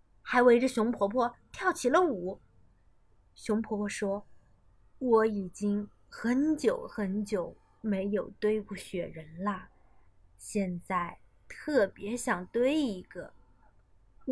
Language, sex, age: Chinese, female, 20-39